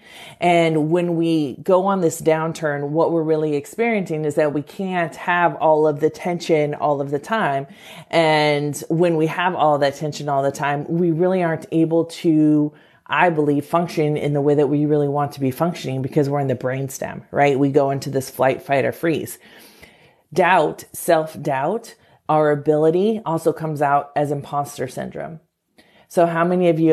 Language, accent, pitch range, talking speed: English, American, 145-165 Hz, 180 wpm